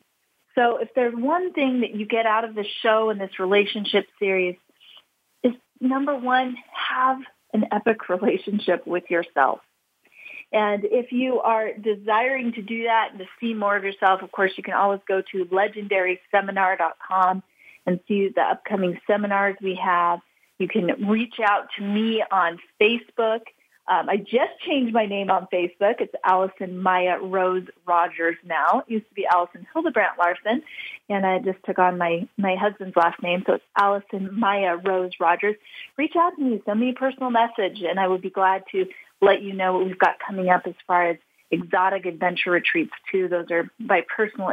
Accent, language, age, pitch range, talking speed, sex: American, English, 40-59, 180-220 Hz, 180 wpm, female